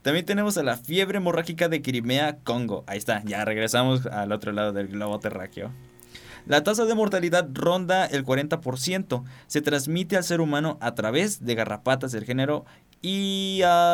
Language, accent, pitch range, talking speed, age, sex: Spanish, Mexican, 115-150 Hz, 165 wpm, 20-39, male